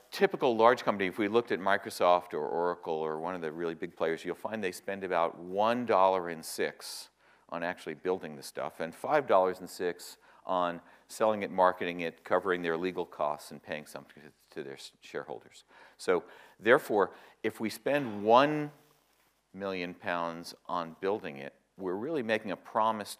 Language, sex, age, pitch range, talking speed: English, male, 50-69, 85-110 Hz, 165 wpm